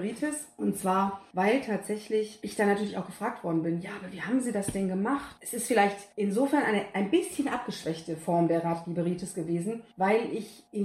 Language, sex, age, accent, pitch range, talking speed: German, female, 30-49, German, 185-230 Hz, 190 wpm